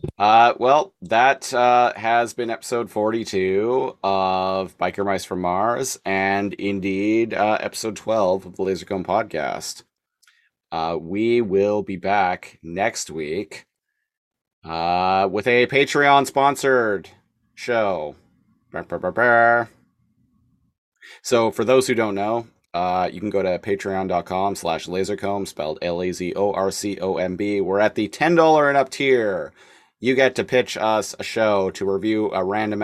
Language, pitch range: English, 95-120 Hz